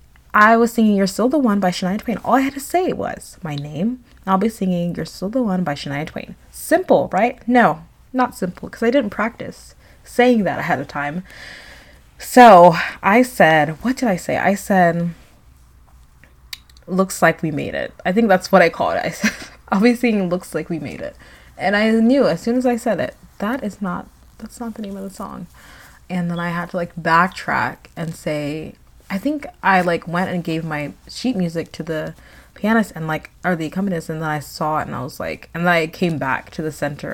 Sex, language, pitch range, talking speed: female, English, 165-225 Hz, 220 wpm